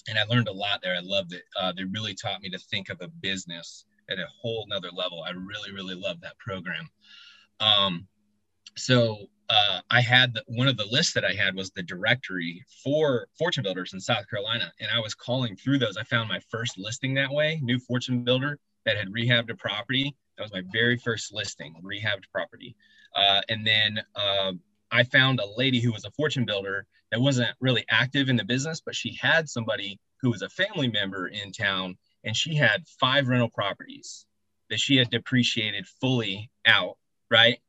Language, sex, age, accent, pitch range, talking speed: English, male, 20-39, American, 100-125 Hz, 195 wpm